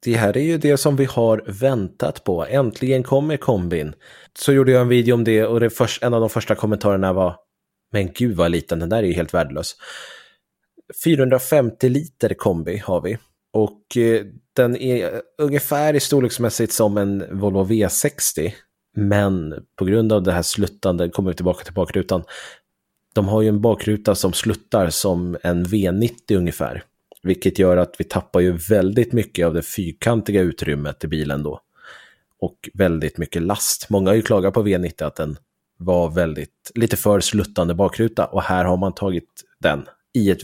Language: Swedish